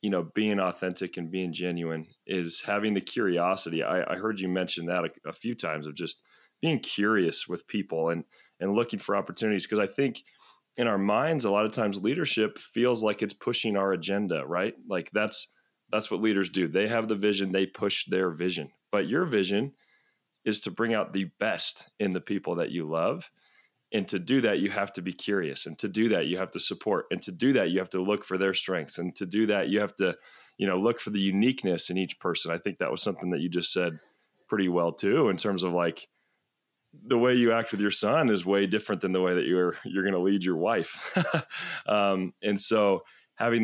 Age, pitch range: 30-49, 90-105 Hz